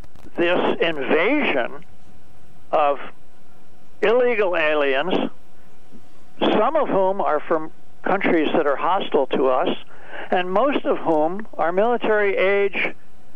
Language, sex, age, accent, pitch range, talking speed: English, male, 60-79, American, 160-195 Hz, 100 wpm